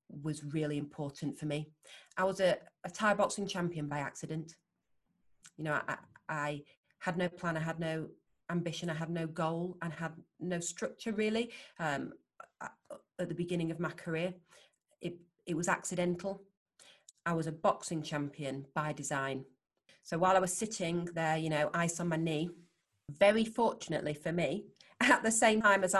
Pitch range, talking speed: 160-195 Hz, 170 wpm